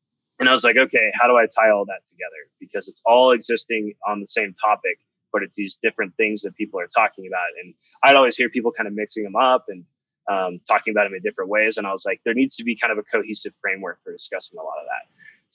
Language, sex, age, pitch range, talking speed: English, male, 20-39, 105-155 Hz, 260 wpm